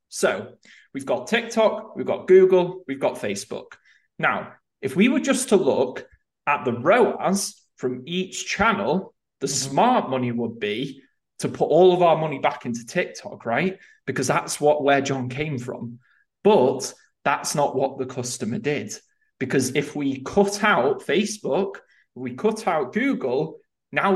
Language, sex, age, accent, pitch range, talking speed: English, male, 20-39, British, 135-190 Hz, 155 wpm